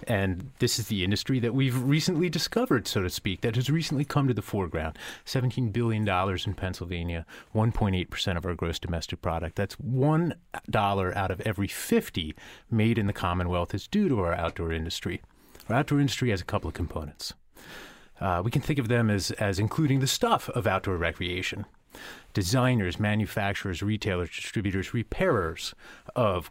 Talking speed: 175 wpm